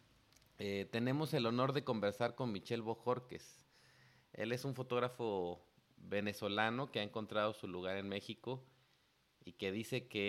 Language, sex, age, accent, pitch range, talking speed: Spanish, male, 30-49, Mexican, 100-125 Hz, 145 wpm